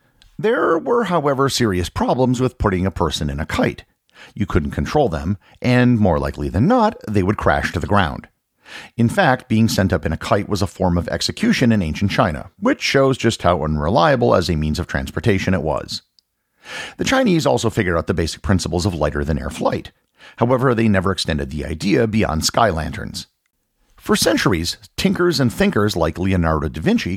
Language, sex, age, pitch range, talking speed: English, male, 50-69, 85-120 Hz, 185 wpm